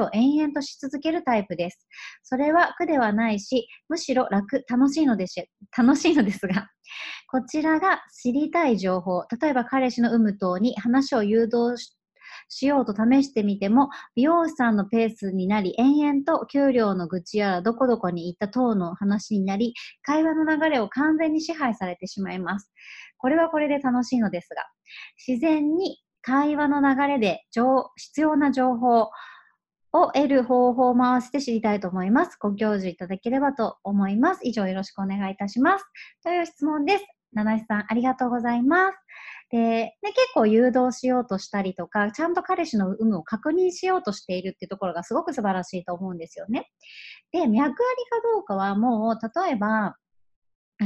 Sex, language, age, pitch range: male, Japanese, 30-49, 200-295 Hz